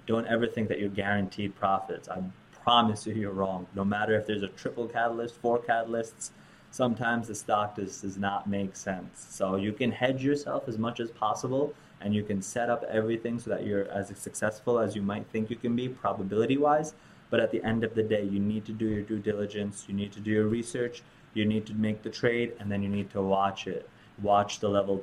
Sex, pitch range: male, 100-115 Hz